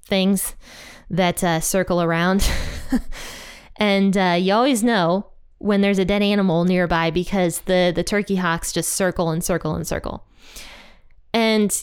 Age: 20-39